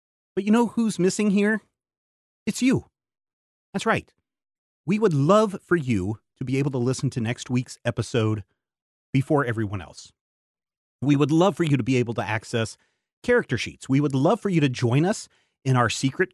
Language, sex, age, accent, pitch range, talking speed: English, male, 30-49, American, 110-150 Hz, 185 wpm